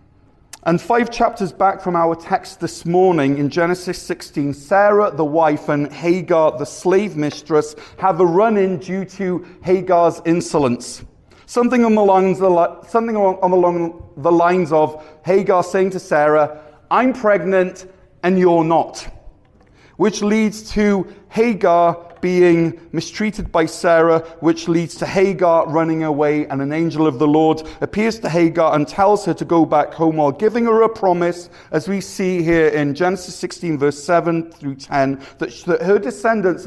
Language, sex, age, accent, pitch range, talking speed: English, male, 40-59, British, 155-190 Hz, 145 wpm